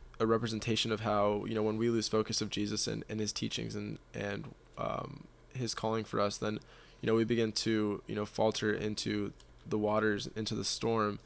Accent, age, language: American, 20-39, English